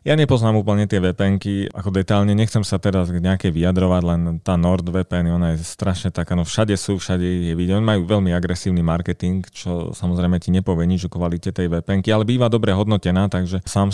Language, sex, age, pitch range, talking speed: Slovak, male, 30-49, 85-100 Hz, 195 wpm